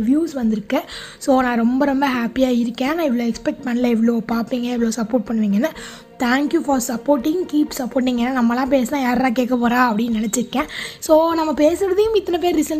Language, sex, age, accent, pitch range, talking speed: Tamil, female, 20-39, native, 240-295 Hz, 170 wpm